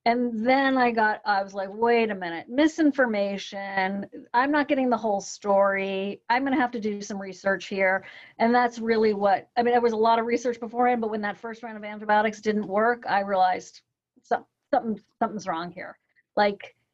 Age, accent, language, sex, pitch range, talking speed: 40-59, American, English, female, 210-275 Hz, 190 wpm